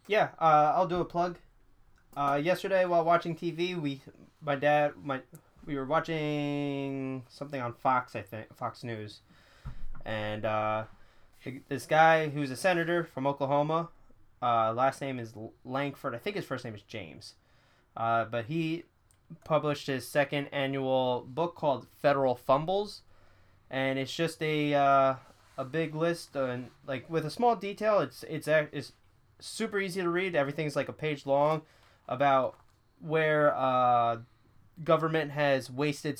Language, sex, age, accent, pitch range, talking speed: English, male, 10-29, American, 120-155 Hz, 150 wpm